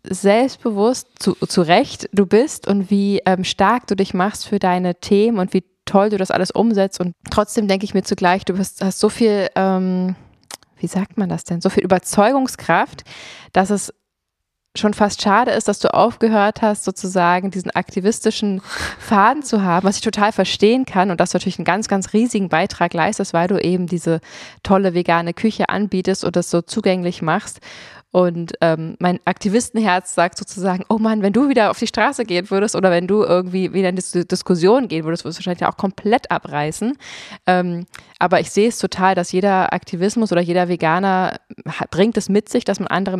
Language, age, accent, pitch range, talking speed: German, 20-39, German, 175-205 Hz, 190 wpm